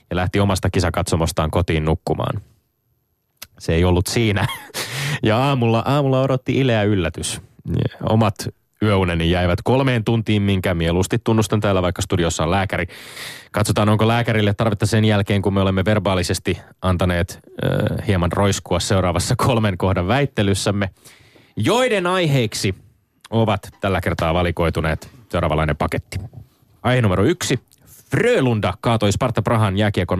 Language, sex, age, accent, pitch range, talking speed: Finnish, male, 30-49, native, 95-120 Hz, 125 wpm